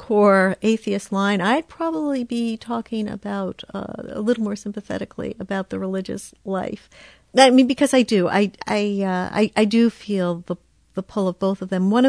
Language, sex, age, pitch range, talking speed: English, female, 50-69, 190-230 Hz, 180 wpm